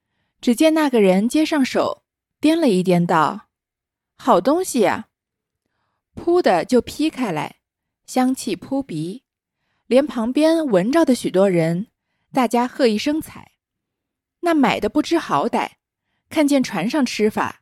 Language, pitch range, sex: Chinese, 195-305 Hz, female